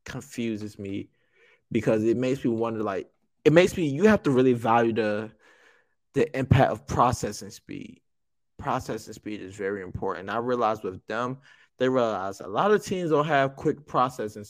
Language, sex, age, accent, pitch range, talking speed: English, male, 20-39, American, 110-135 Hz, 170 wpm